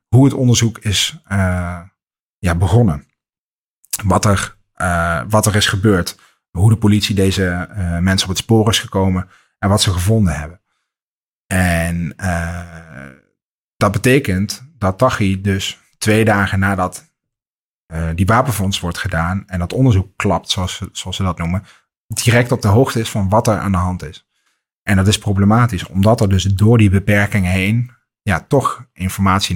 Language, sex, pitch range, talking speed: Dutch, male, 90-105 Hz, 160 wpm